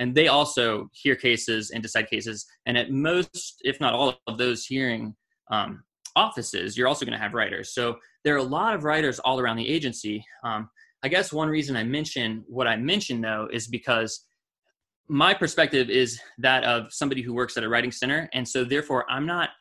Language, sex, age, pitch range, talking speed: English, male, 20-39, 115-145 Hz, 200 wpm